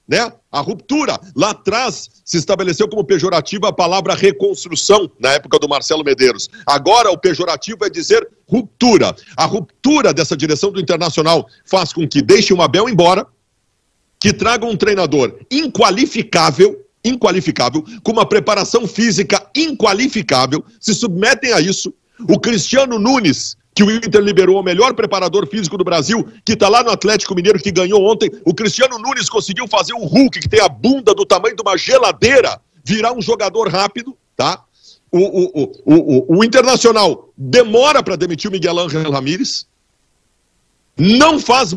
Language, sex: Portuguese, male